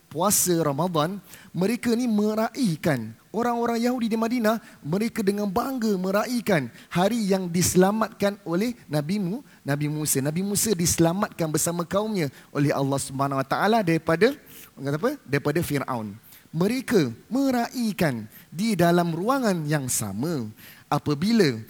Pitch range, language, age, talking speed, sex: 145-210 Hz, Malay, 30-49, 115 wpm, male